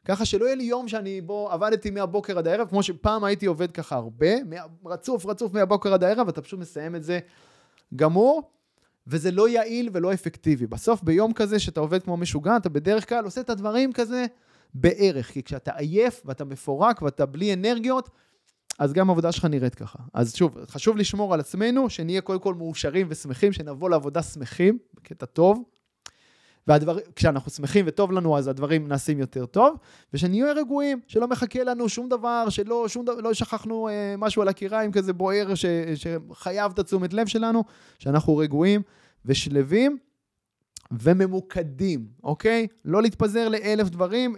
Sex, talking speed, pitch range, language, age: male, 160 wpm, 165-220 Hz, Hebrew, 20-39